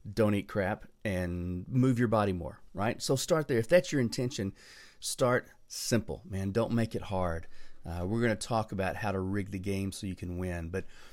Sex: male